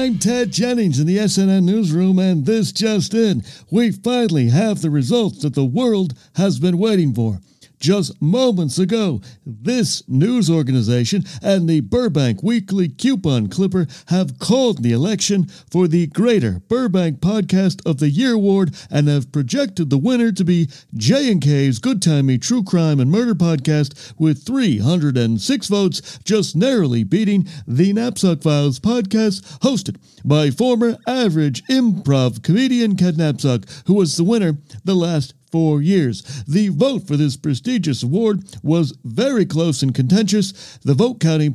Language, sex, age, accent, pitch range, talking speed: English, male, 60-79, American, 150-210 Hz, 150 wpm